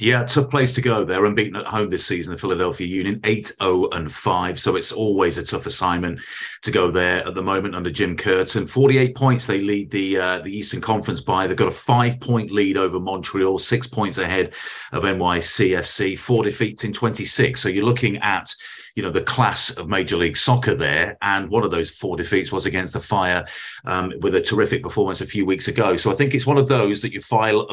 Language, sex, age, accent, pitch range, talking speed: English, male, 40-59, British, 95-130 Hz, 210 wpm